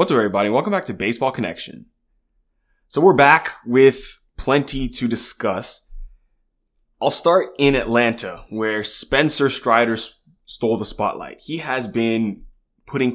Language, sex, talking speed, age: English, male, 130 wpm, 20-39